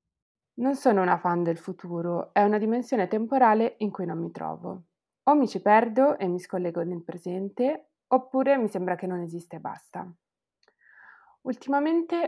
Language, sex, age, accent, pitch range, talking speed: Italian, female, 20-39, native, 185-240 Hz, 160 wpm